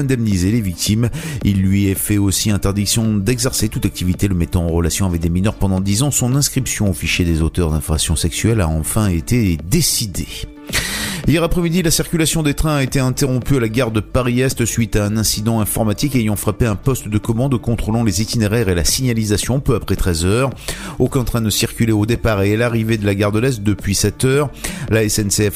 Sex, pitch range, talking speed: male, 95-125 Hz, 205 wpm